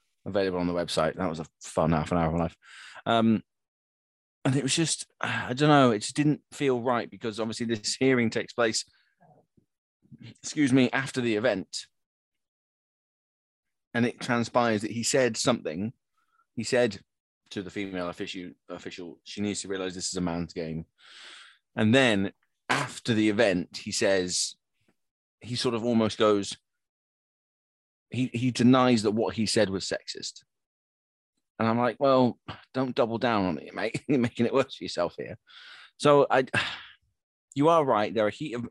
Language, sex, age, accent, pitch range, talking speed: English, male, 20-39, British, 100-130 Hz, 165 wpm